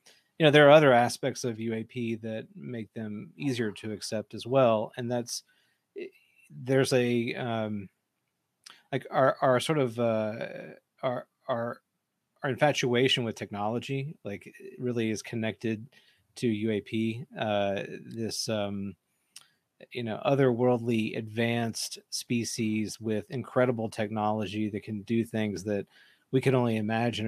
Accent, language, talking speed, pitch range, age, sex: American, English, 130 wpm, 110-130 Hz, 30-49, male